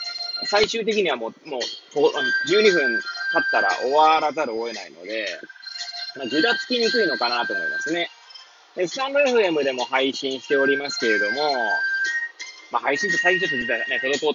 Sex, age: male, 20-39